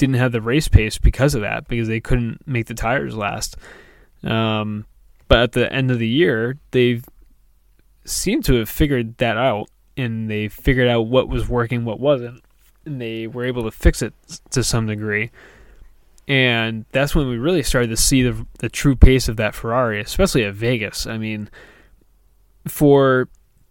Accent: American